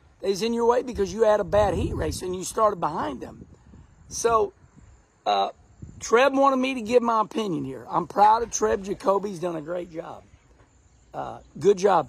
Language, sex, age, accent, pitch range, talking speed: English, male, 50-69, American, 175-275 Hz, 195 wpm